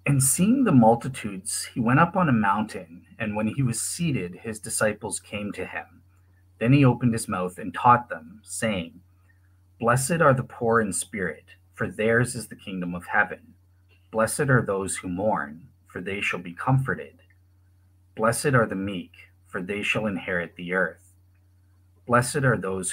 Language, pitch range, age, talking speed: English, 90-115 Hz, 40-59, 170 wpm